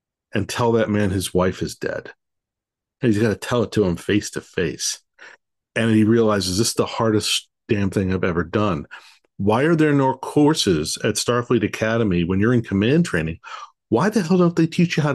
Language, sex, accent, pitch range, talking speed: English, male, American, 95-135 Hz, 200 wpm